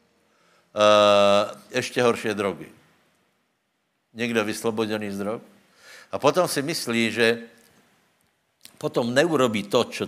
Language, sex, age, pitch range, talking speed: Slovak, male, 70-89, 100-115 Hz, 100 wpm